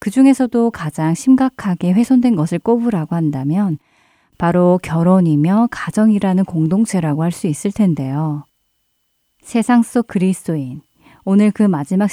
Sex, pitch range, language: female, 160-230 Hz, Korean